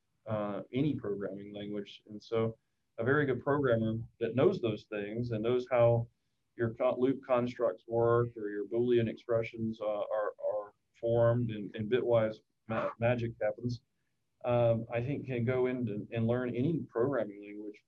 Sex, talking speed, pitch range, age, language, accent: male, 160 wpm, 110-125 Hz, 40-59, English, American